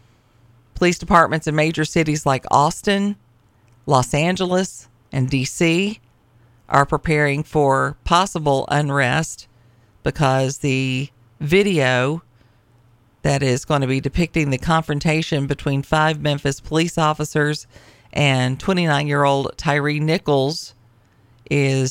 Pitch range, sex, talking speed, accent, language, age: 120-155 Hz, female, 100 wpm, American, English, 40-59